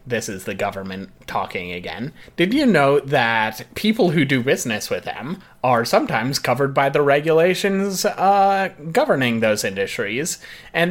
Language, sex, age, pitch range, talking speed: English, male, 30-49, 110-150 Hz, 150 wpm